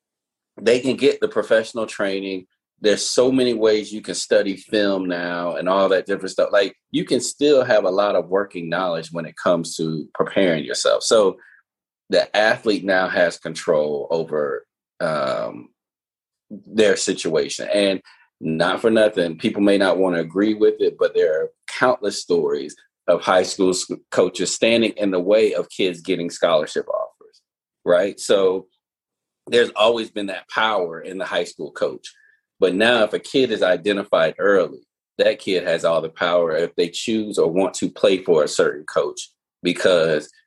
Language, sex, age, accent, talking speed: English, male, 30-49, American, 170 wpm